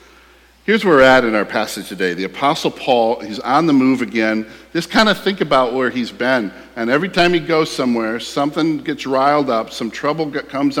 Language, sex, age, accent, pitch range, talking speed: English, male, 50-69, American, 130-160 Hz, 205 wpm